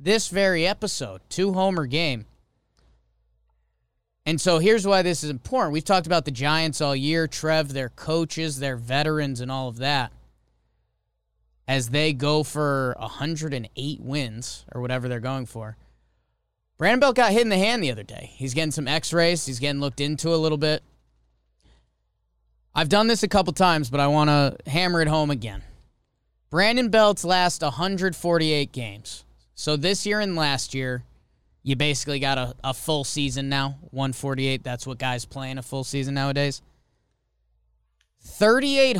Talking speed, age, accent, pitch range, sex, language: 160 wpm, 20-39, American, 125-175 Hz, male, English